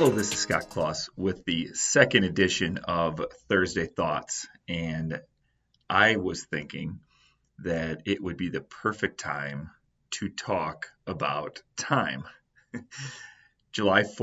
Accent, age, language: American, 30-49, English